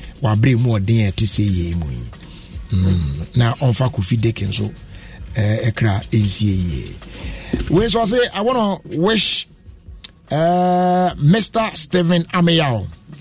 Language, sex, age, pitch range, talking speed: English, male, 60-79, 110-170 Hz, 65 wpm